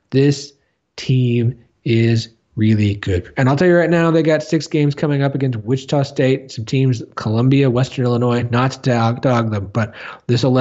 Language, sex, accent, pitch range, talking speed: English, male, American, 110-135 Hz, 180 wpm